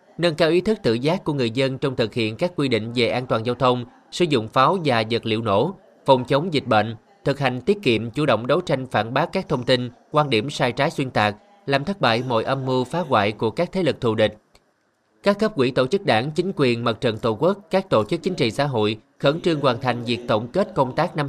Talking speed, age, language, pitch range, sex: 260 wpm, 20-39, Vietnamese, 115-150 Hz, male